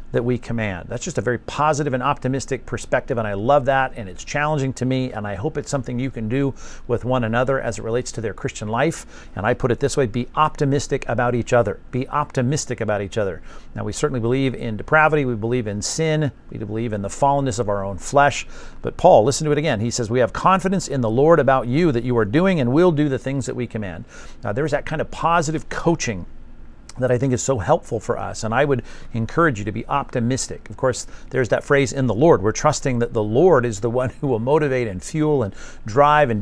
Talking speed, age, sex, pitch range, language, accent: 245 wpm, 50-69, male, 115-145 Hz, English, American